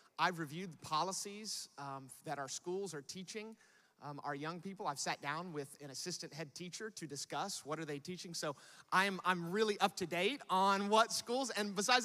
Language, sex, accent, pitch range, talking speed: English, male, American, 135-190 Hz, 200 wpm